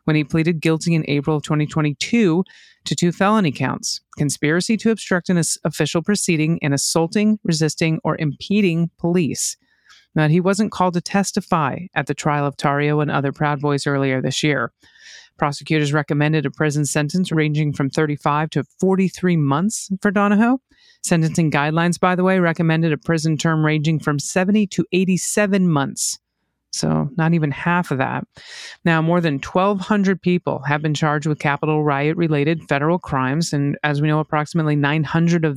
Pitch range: 145-175 Hz